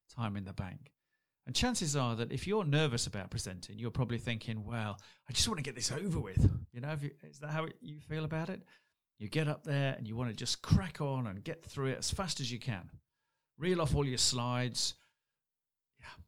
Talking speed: 230 wpm